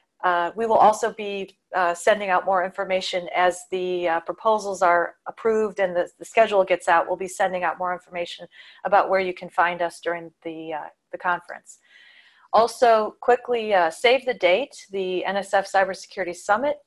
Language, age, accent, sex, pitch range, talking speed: English, 30-49, American, female, 175-210 Hz, 175 wpm